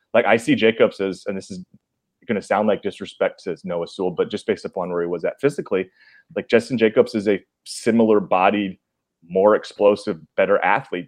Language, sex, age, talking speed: English, male, 30-49, 195 wpm